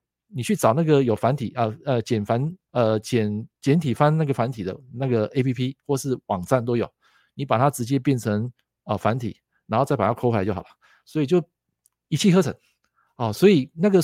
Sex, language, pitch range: male, Chinese, 115-175 Hz